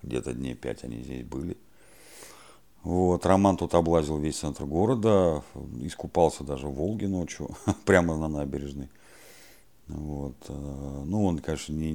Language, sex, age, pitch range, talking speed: Russian, male, 50-69, 70-95 Hz, 130 wpm